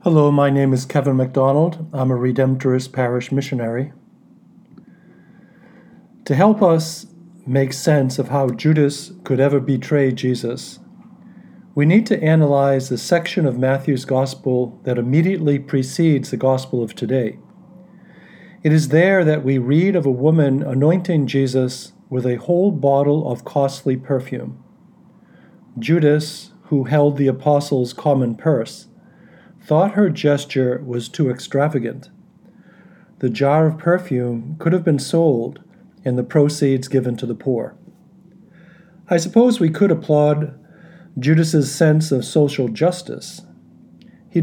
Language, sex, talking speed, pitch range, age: English, male, 130 wpm, 130-180 Hz, 50-69